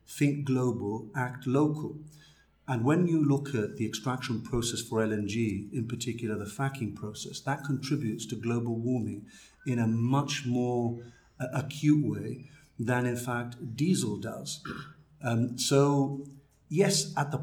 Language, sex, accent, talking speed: English, male, British, 140 wpm